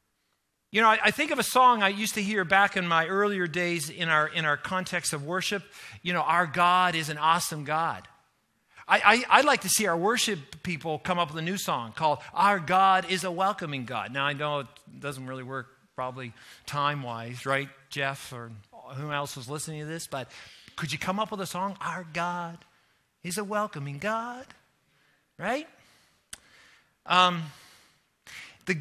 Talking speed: 185 wpm